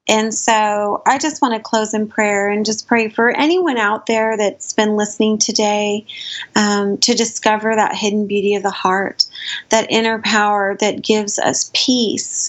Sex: female